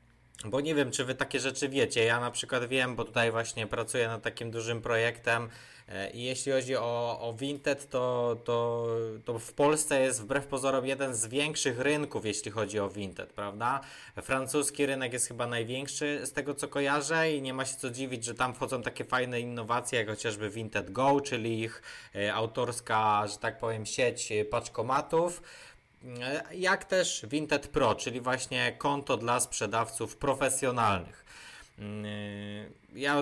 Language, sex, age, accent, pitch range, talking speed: Polish, male, 20-39, native, 115-145 Hz, 155 wpm